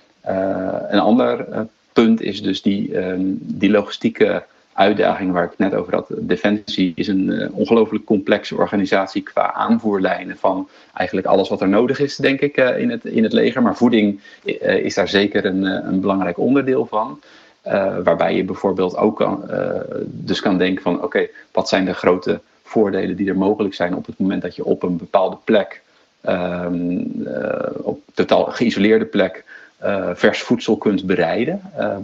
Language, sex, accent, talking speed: Dutch, male, Dutch, 170 wpm